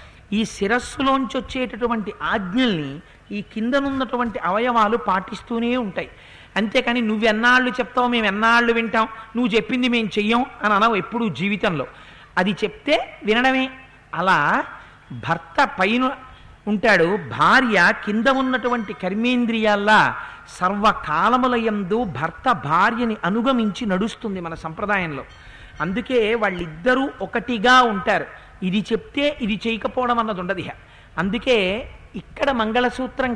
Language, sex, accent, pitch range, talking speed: Telugu, male, native, 195-245 Hz, 100 wpm